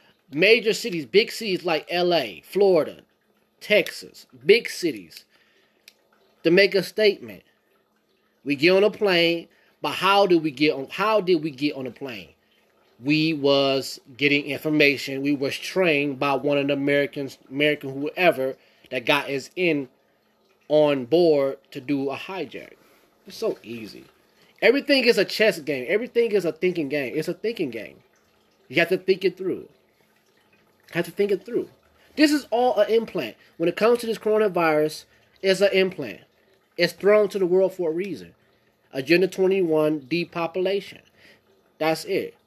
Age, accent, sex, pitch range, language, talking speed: 20-39, American, male, 140-190 Hz, English, 160 wpm